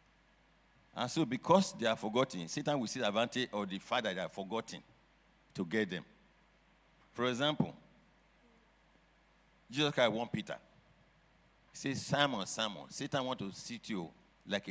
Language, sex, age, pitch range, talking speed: English, male, 60-79, 100-145 Hz, 145 wpm